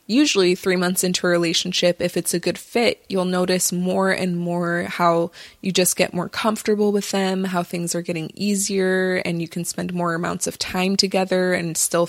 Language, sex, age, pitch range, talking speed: English, female, 20-39, 175-200 Hz, 200 wpm